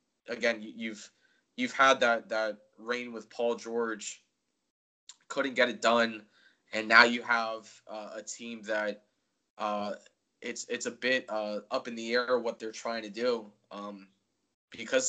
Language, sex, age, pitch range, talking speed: English, male, 20-39, 105-120 Hz, 155 wpm